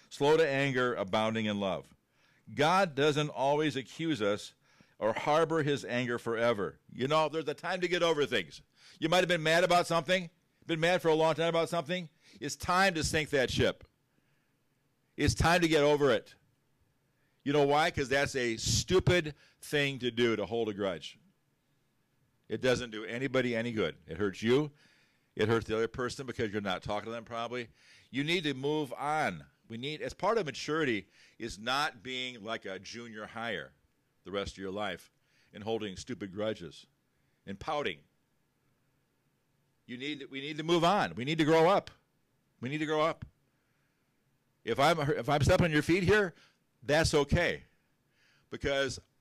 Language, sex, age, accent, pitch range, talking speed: English, male, 50-69, American, 115-155 Hz, 175 wpm